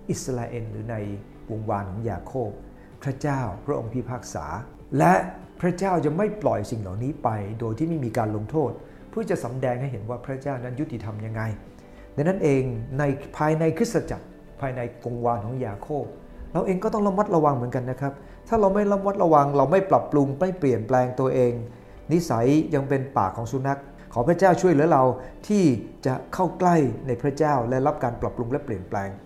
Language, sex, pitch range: English, male, 110-145 Hz